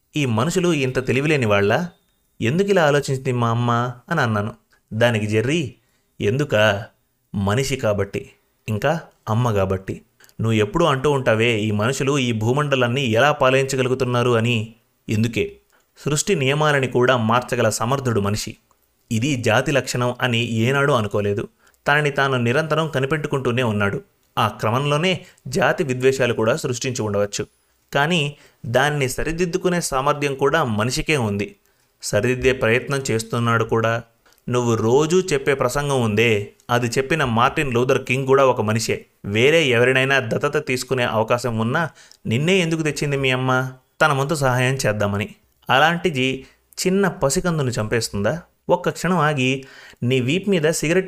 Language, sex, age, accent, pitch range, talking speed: Telugu, male, 30-49, native, 115-145 Hz, 120 wpm